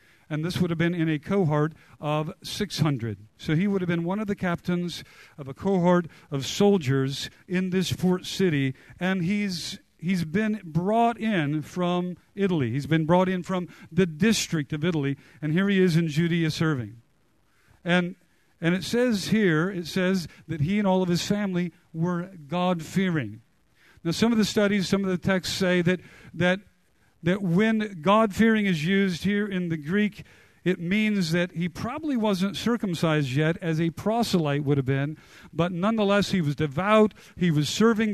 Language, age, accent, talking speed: English, 50-69, American, 175 wpm